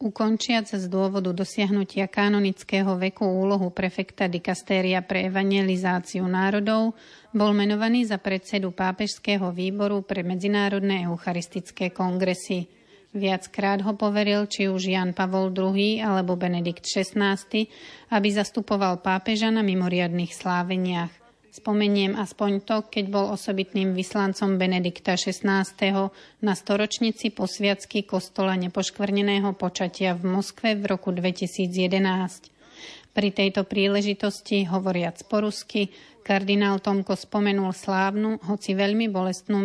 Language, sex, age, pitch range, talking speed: Slovak, female, 40-59, 185-205 Hz, 110 wpm